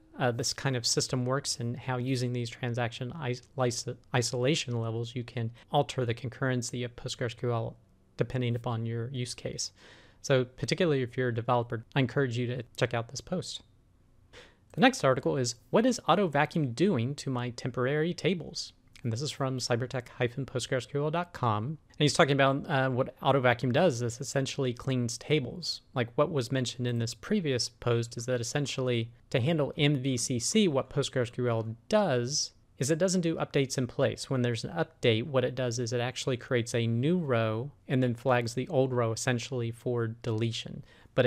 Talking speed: 170 wpm